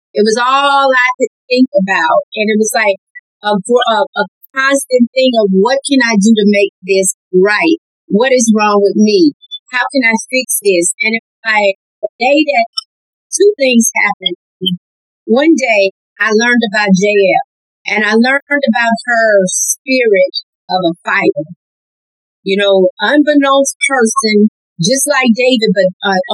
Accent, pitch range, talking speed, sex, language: American, 205-275 Hz, 155 wpm, female, English